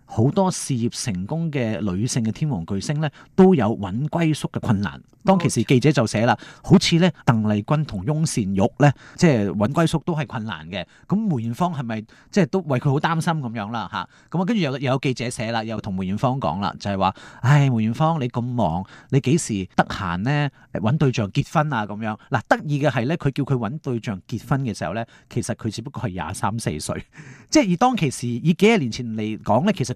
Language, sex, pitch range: Chinese, male, 110-165 Hz